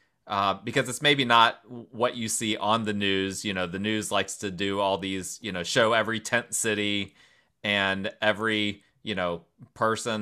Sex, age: male, 30-49